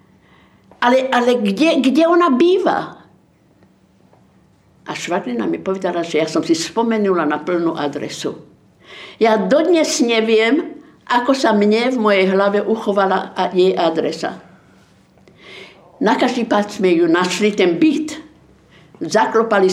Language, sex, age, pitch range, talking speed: Slovak, female, 60-79, 180-230 Hz, 115 wpm